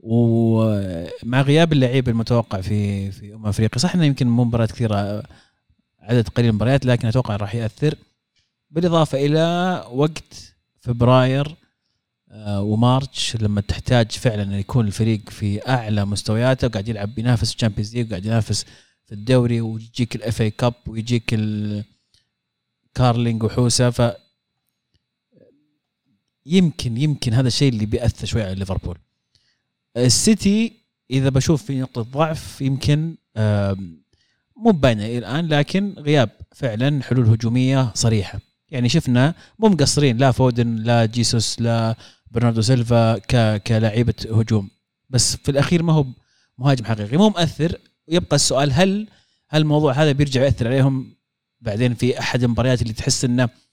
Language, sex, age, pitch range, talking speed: Arabic, male, 30-49, 110-140 Hz, 125 wpm